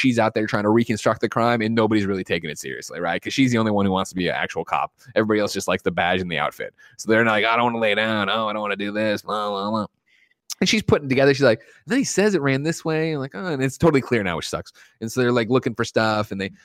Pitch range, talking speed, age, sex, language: 100-130 Hz, 320 wpm, 20-39, male, English